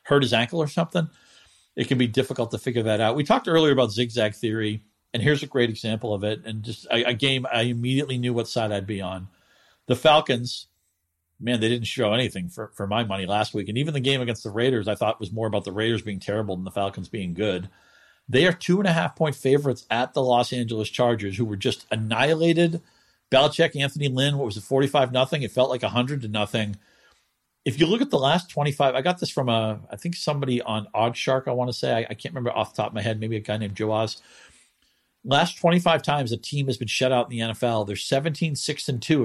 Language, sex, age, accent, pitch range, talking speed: English, male, 50-69, American, 110-140 Hz, 240 wpm